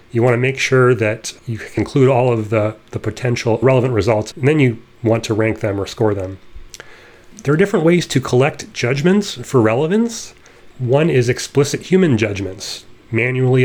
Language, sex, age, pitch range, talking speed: English, male, 30-49, 110-130 Hz, 175 wpm